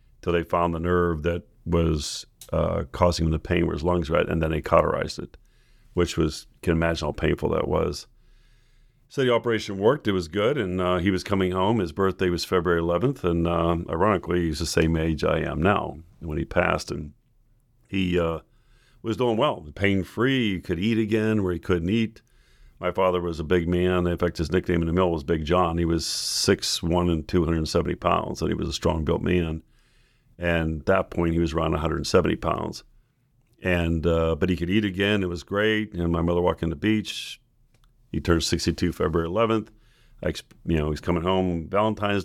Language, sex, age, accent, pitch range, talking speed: English, male, 50-69, American, 80-100 Hz, 205 wpm